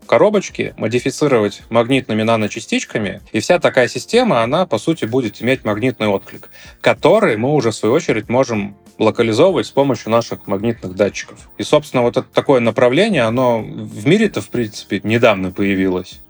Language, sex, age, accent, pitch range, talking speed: Russian, male, 20-39, native, 100-125 Hz, 150 wpm